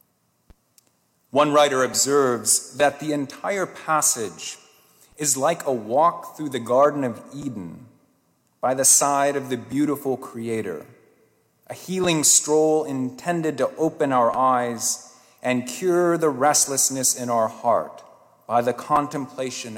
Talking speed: 125 wpm